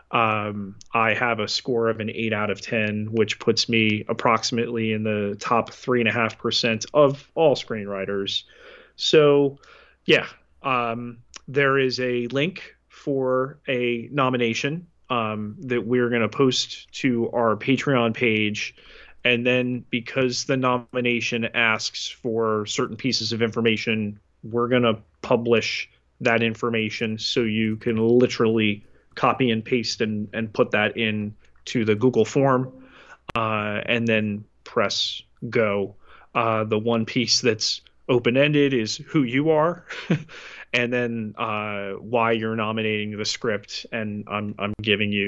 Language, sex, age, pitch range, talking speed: English, male, 30-49, 110-125 Hz, 140 wpm